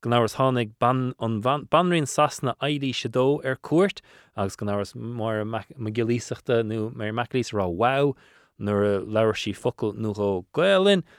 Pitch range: 100-135 Hz